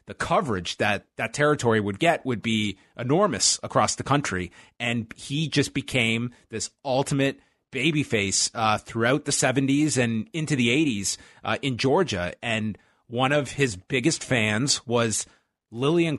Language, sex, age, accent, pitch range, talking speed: English, male, 30-49, American, 115-150 Hz, 145 wpm